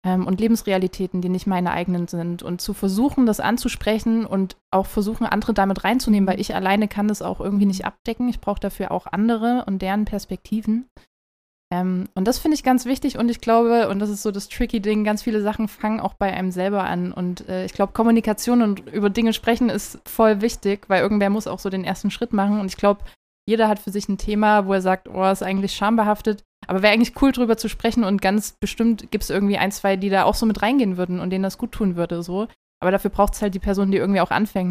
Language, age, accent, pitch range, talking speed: German, 20-39, German, 190-220 Hz, 240 wpm